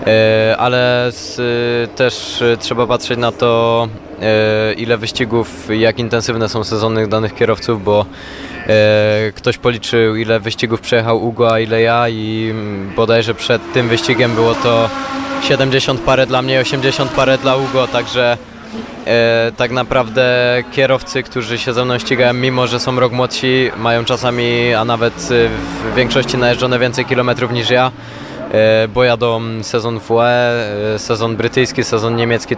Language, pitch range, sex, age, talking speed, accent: Polish, 110-125 Hz, male, 20-39, 135 wpm, native